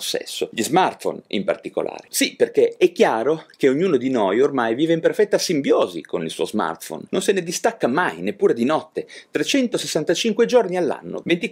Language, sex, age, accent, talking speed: Italian, male, 30-49, native, 170 wpm